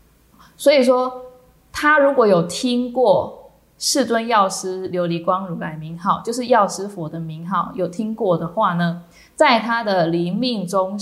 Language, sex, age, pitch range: Chinese, female, 20-39, 175-225 Hz